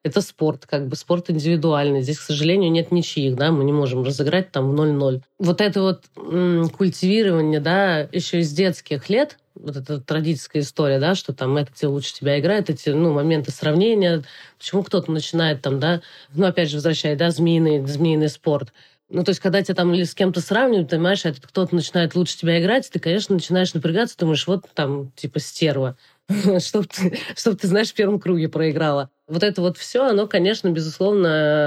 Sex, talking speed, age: female, 190 wpm, 20-39